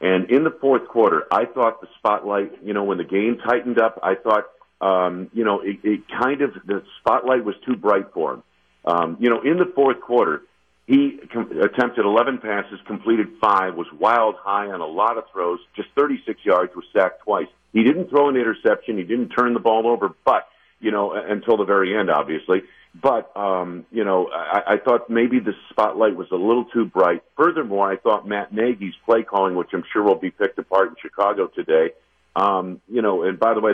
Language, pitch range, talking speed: English, 95-120 Hz, 210 wpm